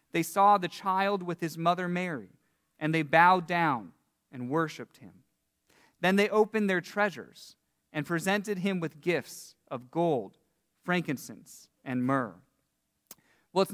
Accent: American